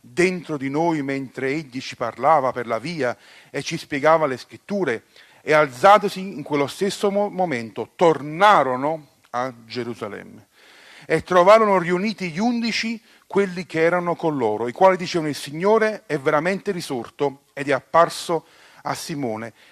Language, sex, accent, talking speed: Italian, male, native, 145 wpm